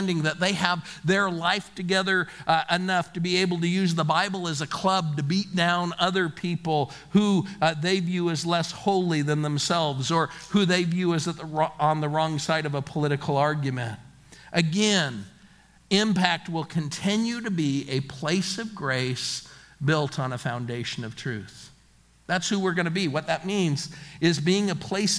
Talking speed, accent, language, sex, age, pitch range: 175 wpm, American, English, male, 50-69, 150-180 Hz